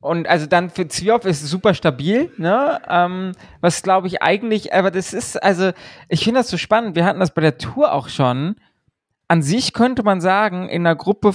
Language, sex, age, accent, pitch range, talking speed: German, male, 20-39, German, 170-210 Hz, 205 wpm